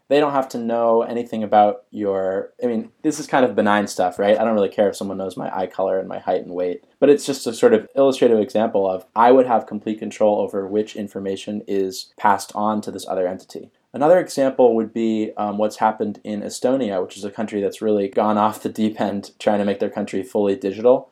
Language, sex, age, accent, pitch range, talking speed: English, male, 20-39, American, 100-130 Hz, 235 wpm